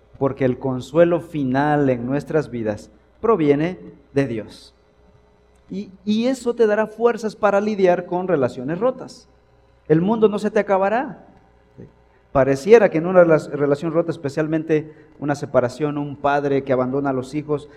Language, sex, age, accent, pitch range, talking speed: Spanish, male, 50-69, Mexican, 125-180 Hz, 145 wpm